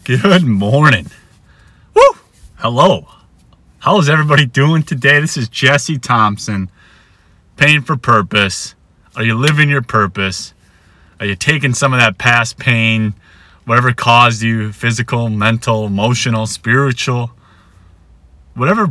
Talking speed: 115 wpm